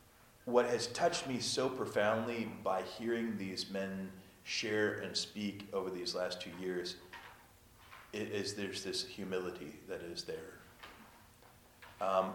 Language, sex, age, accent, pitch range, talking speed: English, male, 30-49, American, 100-120 Hz, 125 wpm